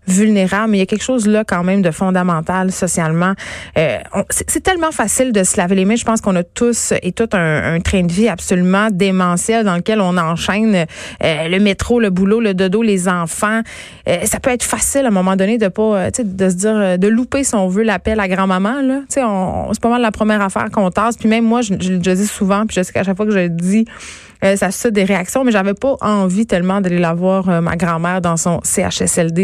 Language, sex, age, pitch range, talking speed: French, female, 30-49, 180-215 Hz, 245 wpm